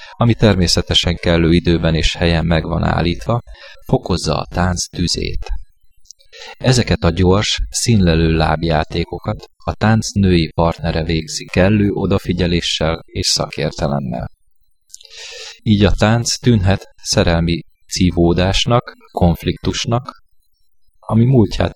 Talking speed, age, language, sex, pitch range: 100 wpm, 30-49, Hungarian, male, 85-100 Hz